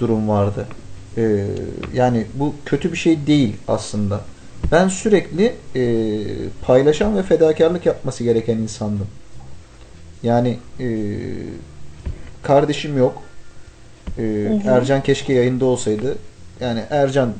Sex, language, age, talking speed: male, Turkish, 40-59, 105 wpm